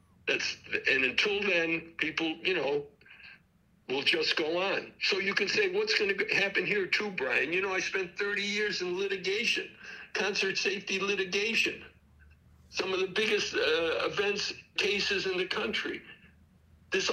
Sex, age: male, 60-79